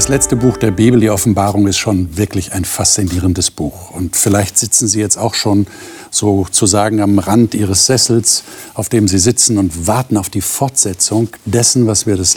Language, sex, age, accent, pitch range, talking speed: German, male, 50-69, German, 95-120 Hz, 185 wpm